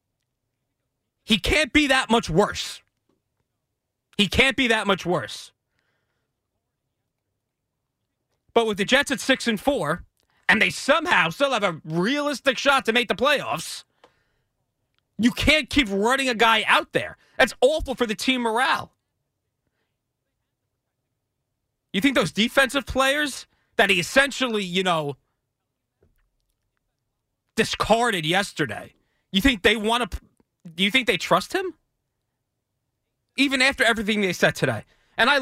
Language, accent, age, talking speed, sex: English, American, 30-49, 130 wpm, male